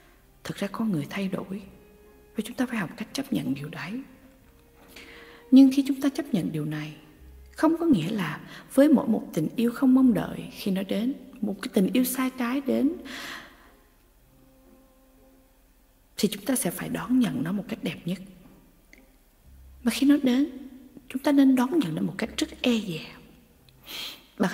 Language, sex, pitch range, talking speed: Vietnamese, female, 160-260 Hz, 180 wpm